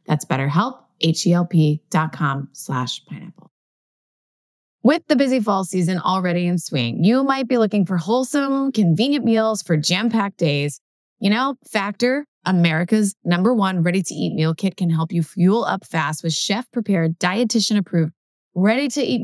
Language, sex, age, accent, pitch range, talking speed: English, female, 20-39, American, 165-220 Hz, 145 wpm